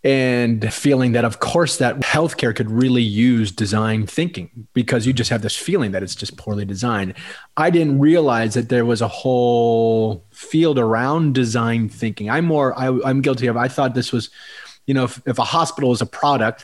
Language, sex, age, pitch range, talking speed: English, male, 30-49, 110-135 Hz, 190 wpm